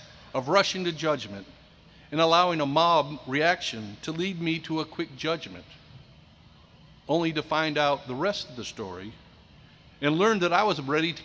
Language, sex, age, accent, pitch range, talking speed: English, male, 60-79, American, 135-180 Hz, 170 wpm